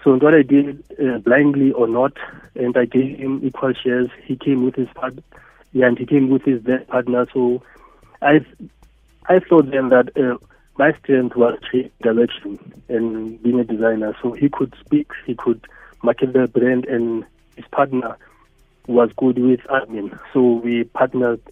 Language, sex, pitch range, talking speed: English, male, 120-140 Hz, 165 wpm